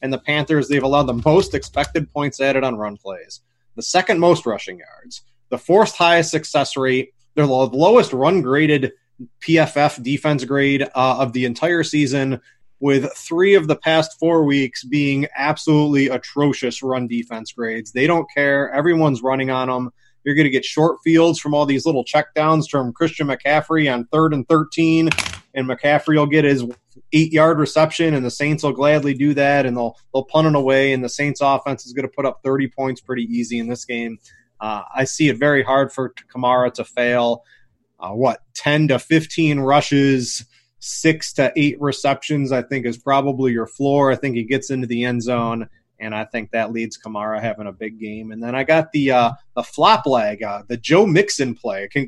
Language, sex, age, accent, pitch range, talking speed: English, male, 20-39, American, 125-150 Hz, 190 wpm